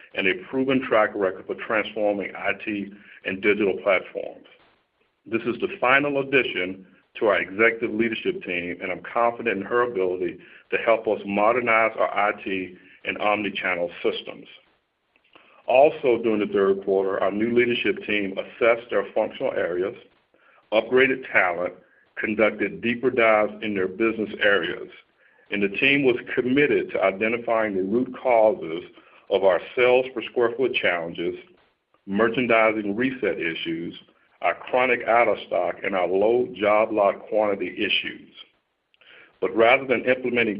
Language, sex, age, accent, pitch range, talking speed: English, male, 50-69, American, 100-125 Hz, 140 wpm